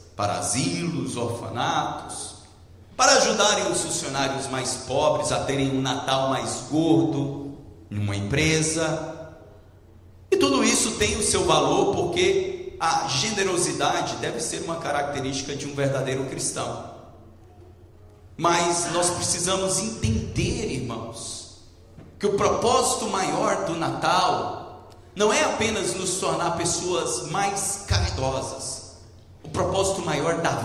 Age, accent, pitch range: 40-59, Brazilian, 120-180 Hz